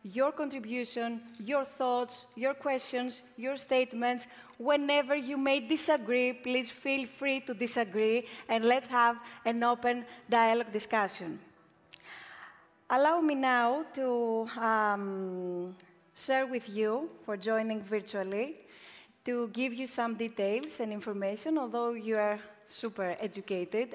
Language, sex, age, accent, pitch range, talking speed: Greek, female, 30-49, Spanish, 215-260 Hz, 120 wpm